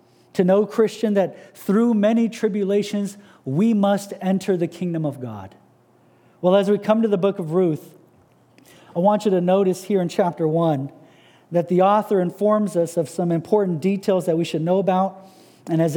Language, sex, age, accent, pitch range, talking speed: English, male, 40-59, American, 170-210 Hz, 180 wpm